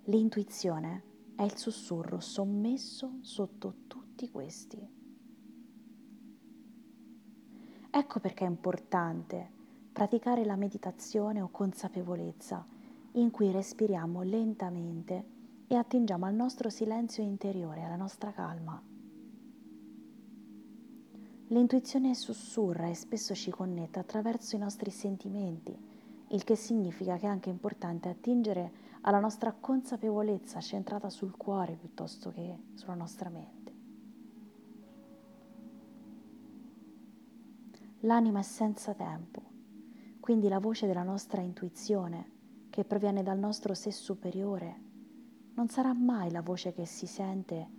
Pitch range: 190-240 Hz